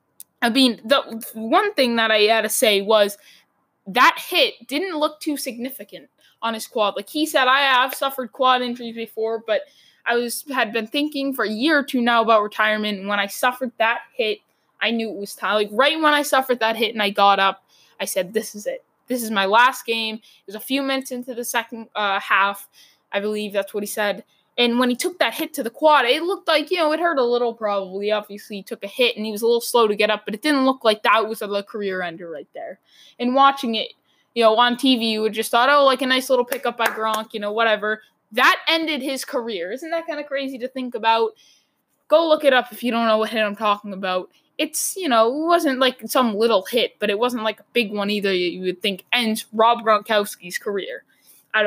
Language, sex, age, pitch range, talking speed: English, female, 20-39, 210-260 Hz, 240 wpm